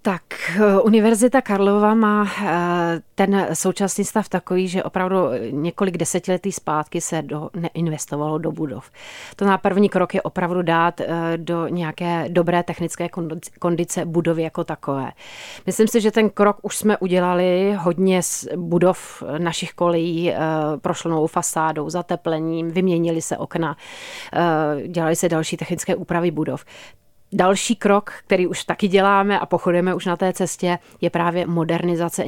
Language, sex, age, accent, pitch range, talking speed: Czech, female, 30-49, native, 165-185 Hz, 135 wpm